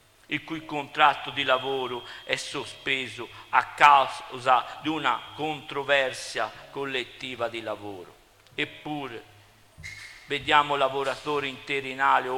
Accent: native